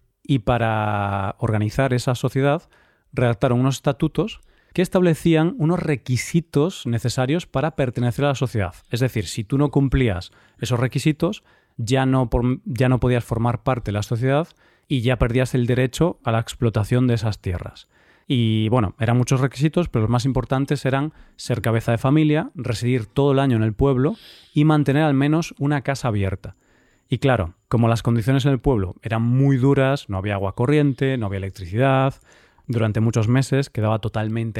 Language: Spanish